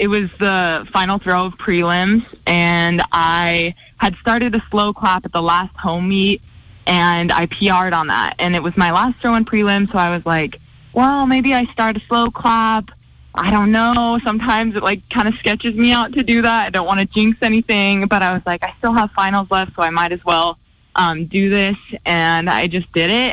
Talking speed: 220 wpm